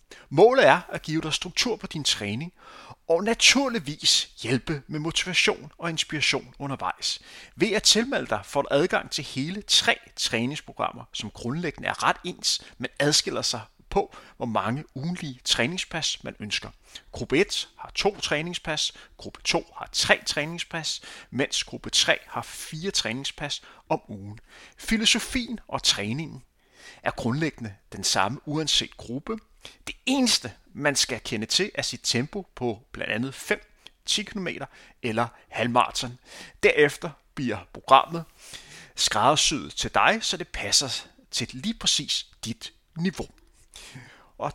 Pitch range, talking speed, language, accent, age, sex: 125-180 Hz, 135 wpm, Danish, native, 30-49, male